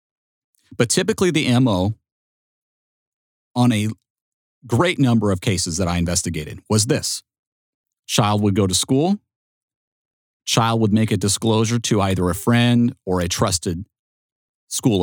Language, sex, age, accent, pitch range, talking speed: English, male, 40-59, American, 95-120 Hz, 130 wpm